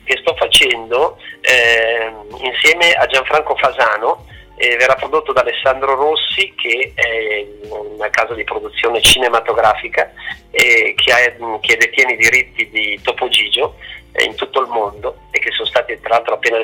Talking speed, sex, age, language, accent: 155 wpm, male, 30-49, Italian, native